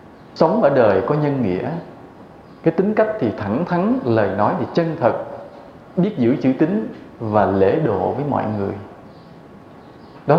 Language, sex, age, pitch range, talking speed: English, male, 20-39, 110-180 Hz, 160 wpm